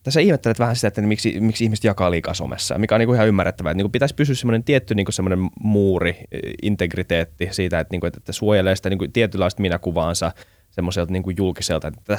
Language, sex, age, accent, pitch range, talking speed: Finnish, male, 20-39, native, 90-110 Hz, 230 wpm